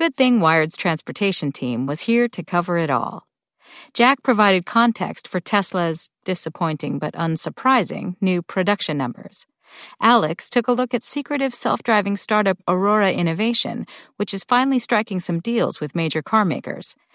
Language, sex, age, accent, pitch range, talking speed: English, female, 50-69, American, 170-235 Hz, 145 wpm